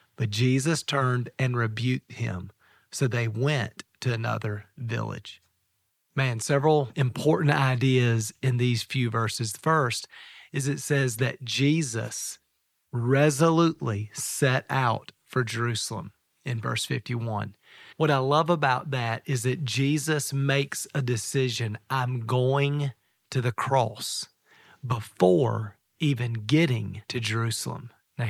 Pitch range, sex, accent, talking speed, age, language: 120-145 Hz, male, American, 120 wpm, 40-59, English